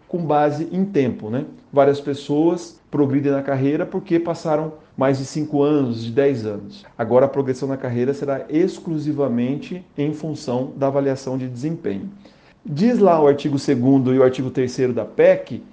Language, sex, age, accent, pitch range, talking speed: Portuguese, male, 40-59, Brazilian, 130-165 Hz, 165 wpm